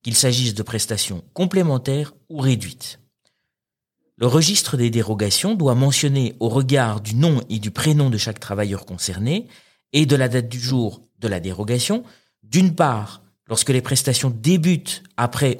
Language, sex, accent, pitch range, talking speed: French, male, French, 110-140 Hz, 155 wpm